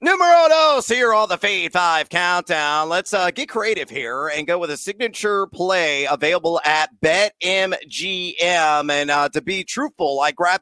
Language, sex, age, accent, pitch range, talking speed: English, male, 30-49, American, 155-200 Hz, 165 wpm